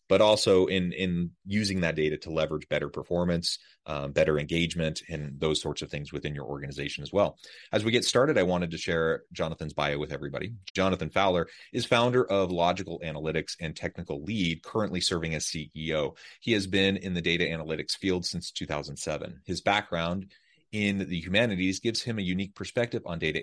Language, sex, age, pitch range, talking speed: English, male, 30-49, 80-95 Hz, 185 wpm